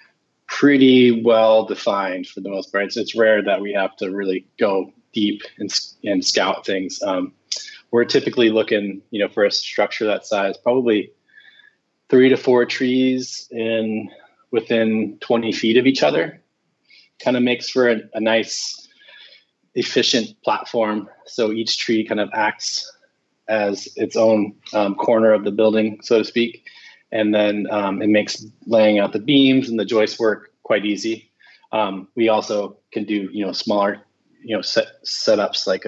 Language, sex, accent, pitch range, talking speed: English, male, American, 105-120 Hz, 160 wpm